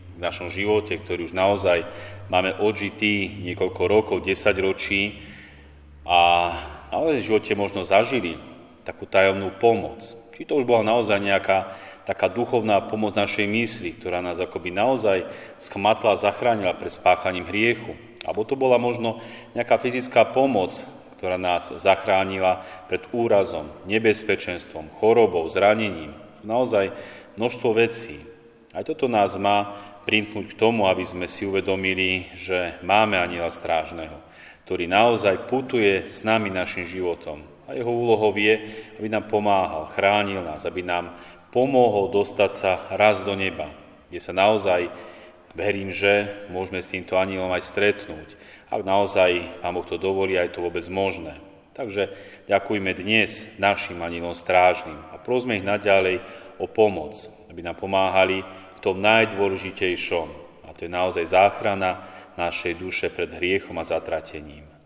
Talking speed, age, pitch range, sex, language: 135 wpm, 30-49, 90-105 Hz, male, Slovak